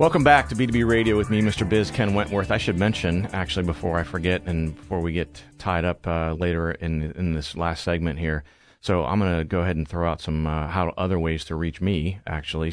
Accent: American